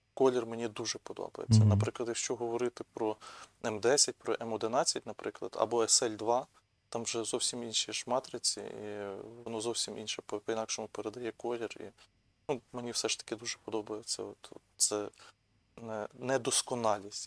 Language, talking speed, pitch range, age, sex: Ukrainian, 125 wpm, 110-125 Hz, 20-39, male